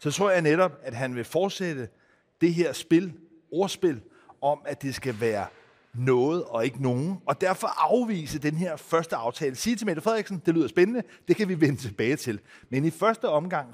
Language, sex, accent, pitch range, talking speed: Danish, male, native, 135-180 Hz, 195 wpm